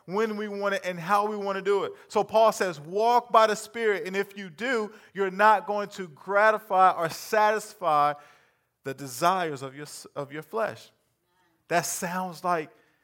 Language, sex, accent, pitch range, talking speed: English, male, American, 160-205 Hz, 180 wpm